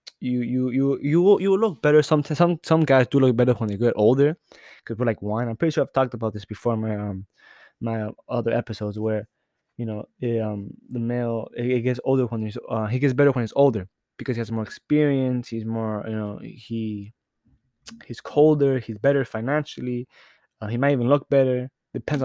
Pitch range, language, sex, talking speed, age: 110-140 Hz, English, male, 215 wpm, 20-39